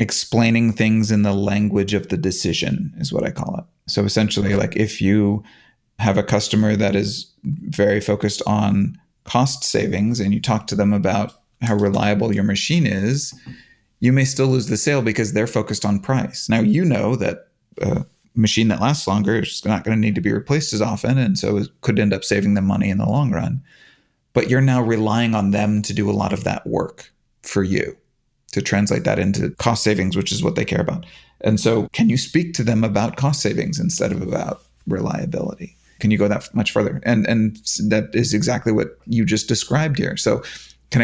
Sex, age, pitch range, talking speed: male, 30-49, 105-120 Hz, 205 wpm